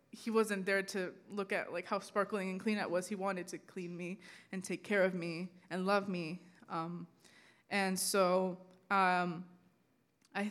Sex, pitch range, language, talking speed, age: female, 180-210 Hz, English, 175 wpm, 20-39